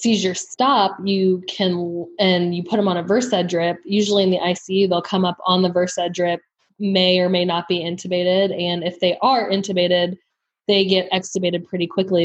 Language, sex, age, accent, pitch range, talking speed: English, female, 10-29, American, 175-195 Hz, 190 wpm